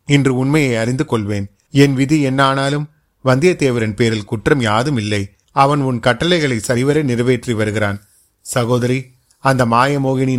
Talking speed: 120 wpm